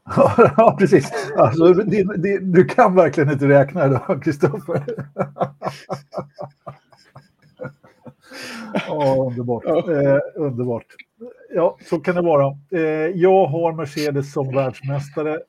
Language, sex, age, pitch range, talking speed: Swedish, male, 50-69, 125-145 Hz, 95 wpm